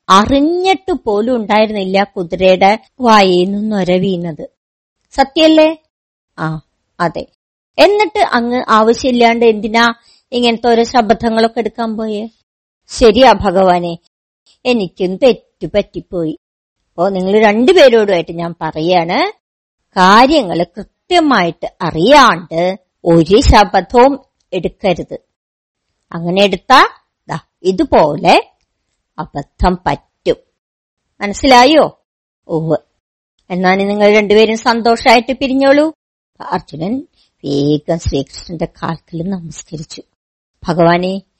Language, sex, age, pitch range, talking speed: Malayalam, male, 50-69, 165-235 Hz, 75 wpm